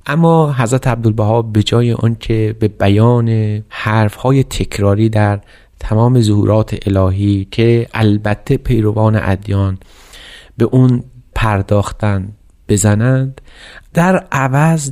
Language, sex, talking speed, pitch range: Persian, male, 95 wpm, 100-130 Hz